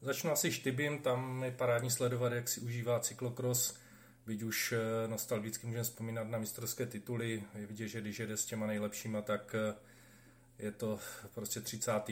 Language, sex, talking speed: Czech, male, 160 wpm